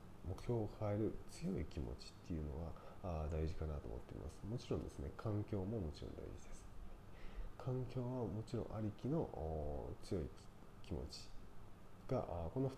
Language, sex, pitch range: Japanese, male, 80-100 Hz